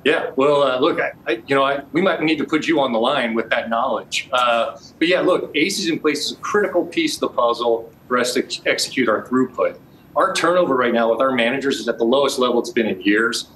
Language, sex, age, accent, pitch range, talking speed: English, male, 40-59, American, 120-155 Hz, 260 wpm